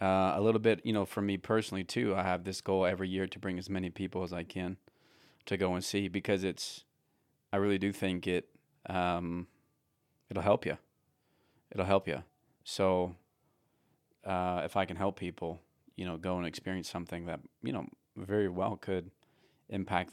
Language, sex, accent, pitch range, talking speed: English, male, American, 90-95 Hz, 185 wpm